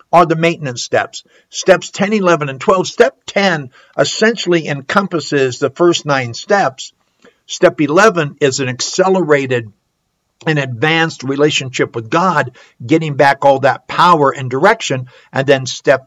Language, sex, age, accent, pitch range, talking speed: English, male, 60-79, American, 135-185 Hz, 140 wpm